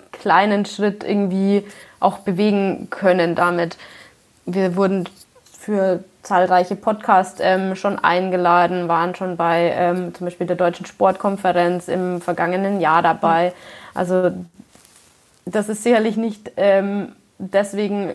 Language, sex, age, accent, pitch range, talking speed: German, female, 20-39, German, 190-225 Hz, 115 wpm